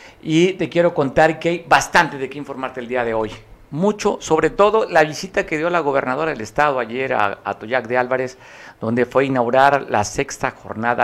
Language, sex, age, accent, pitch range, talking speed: Spanish, male, 50-69, Mexican, 110-145 Hz, 200 wpm